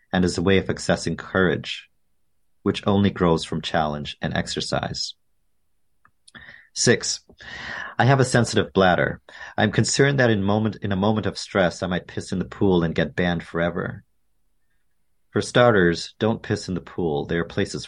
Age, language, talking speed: 40-59, English, 170 wpm